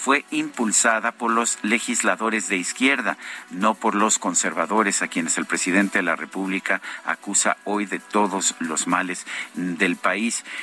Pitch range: 95-120 Hz